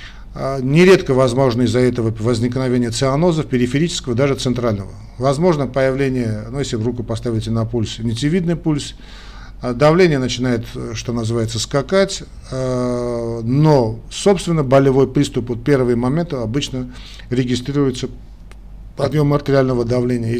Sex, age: male, 50-69